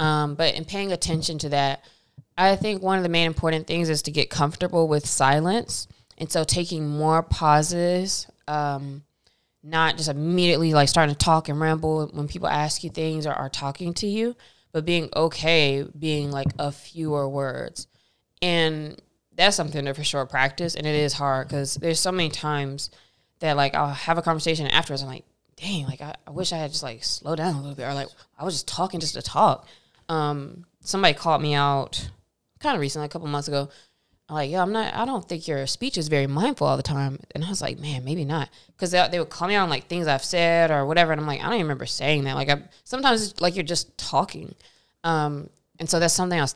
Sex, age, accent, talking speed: female, 20-39, American, 230 wpm